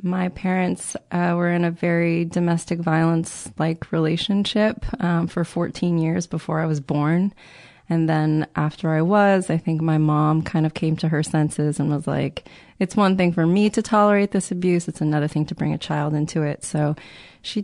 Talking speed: 190 wpm